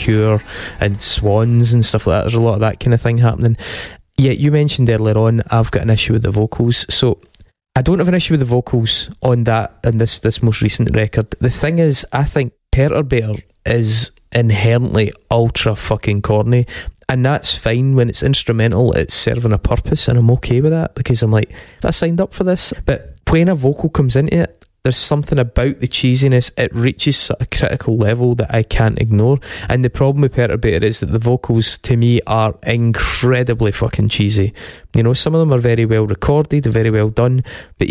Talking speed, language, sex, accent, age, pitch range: 205 wpm, English, male, British, 20-39, 110-125 Hz